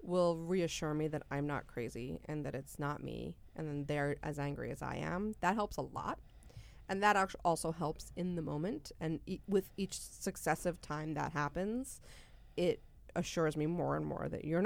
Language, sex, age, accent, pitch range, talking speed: English, female, 30-49, American, 150-195 Hz, 190 wpm